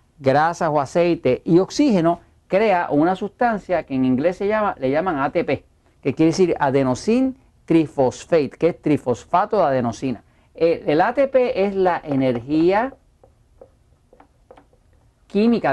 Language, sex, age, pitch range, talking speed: Spanish, male, 40-59, 140-205 Hz, 125 wpm